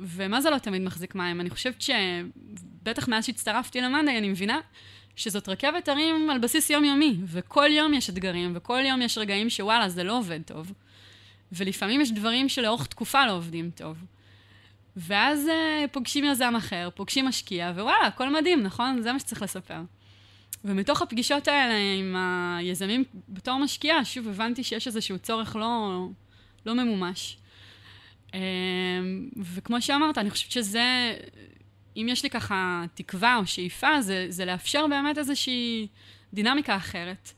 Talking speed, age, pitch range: 145 wpm, 20-39, 175-250 Hz